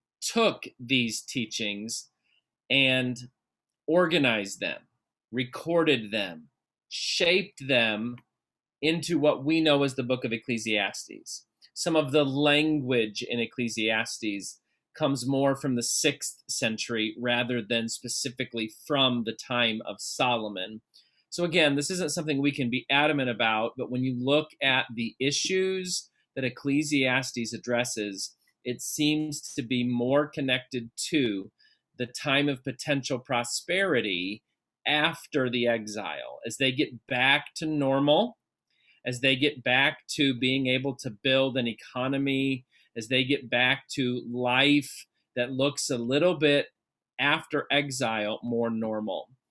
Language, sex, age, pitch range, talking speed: English, male, 30-49, 120-145 Hz, 130 wpm